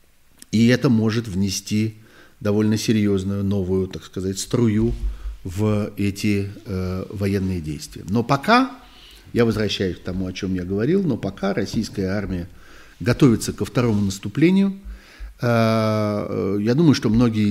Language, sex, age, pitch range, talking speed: Russian, male, 50-69, 95-115 Hz, 130 wpm